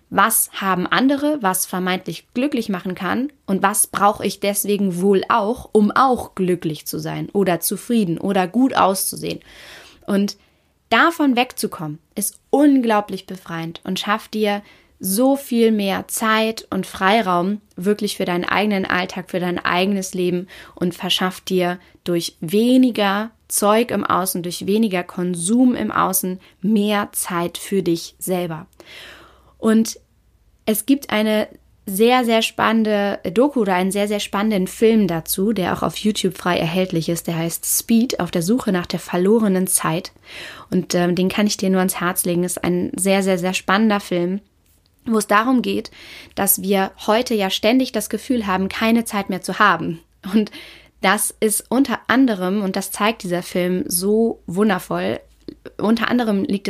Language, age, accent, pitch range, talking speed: German, 20-39, German, 185-220 Hz, 155 wpm